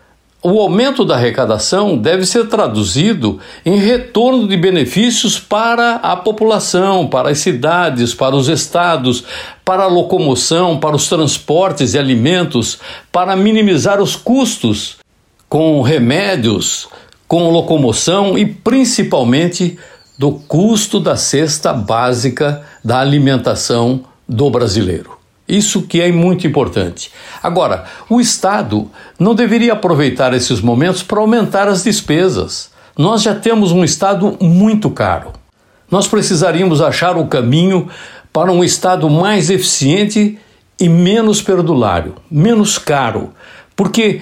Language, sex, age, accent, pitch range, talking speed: Portuguese, male, 60-79, Brazilian, 145-205 Hz, 120 wpm